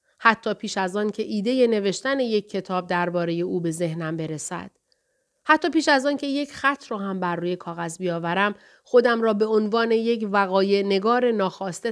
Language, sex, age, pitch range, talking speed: Persian, female, 30-49, 180-245 Hz, 175 wpm